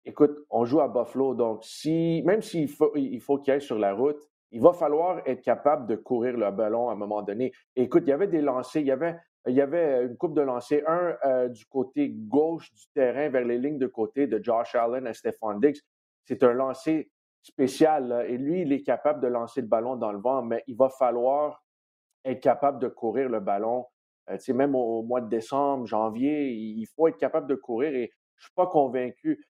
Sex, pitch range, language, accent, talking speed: male, 120-150 Hz, French, Canadian, 235 wpm